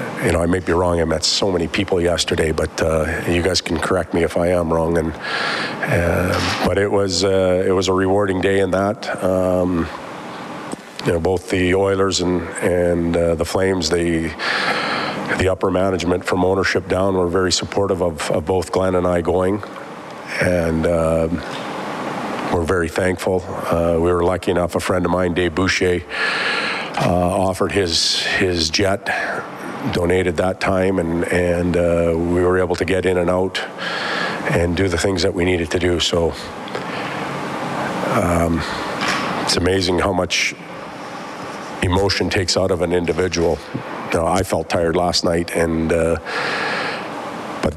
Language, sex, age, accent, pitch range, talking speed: English, male, 50-69, American, 85-95 Hz, 165 wpm